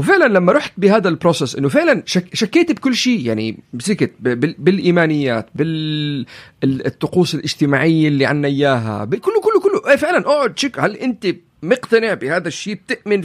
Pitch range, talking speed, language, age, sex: 150-230 Hz, 140 wpm, Arabic, 40-59, male